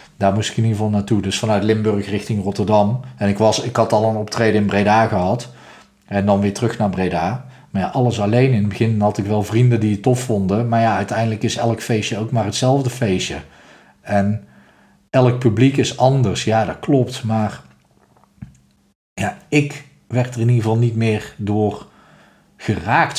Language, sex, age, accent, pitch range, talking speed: Dutch, male, 40-59, Dutch, 105-125 Hz, 190 wpm